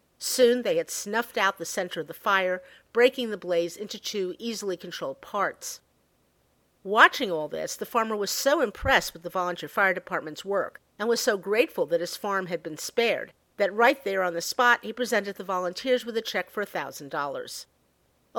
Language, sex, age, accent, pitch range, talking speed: English, female, 50-69, American, 175-240 Hz, 190 wpm